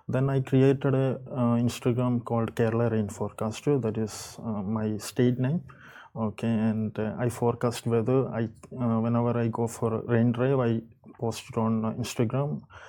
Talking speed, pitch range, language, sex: 170 wpm, 115-135 Hz, English, male